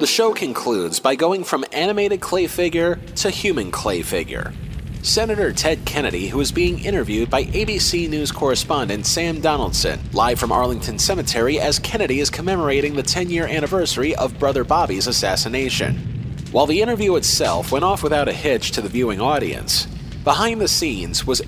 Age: 40-59